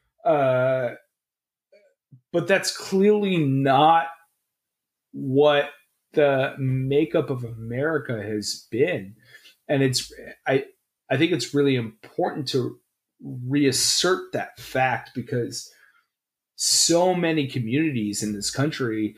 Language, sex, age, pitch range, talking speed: English, male, 30-49, 120-150 Hz, 95 wpm